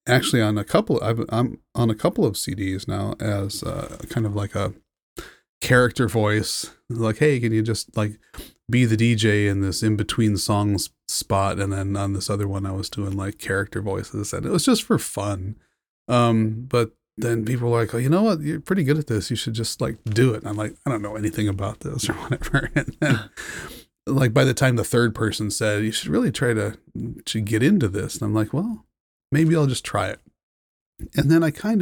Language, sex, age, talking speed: English, male, 30-49, 220 wpm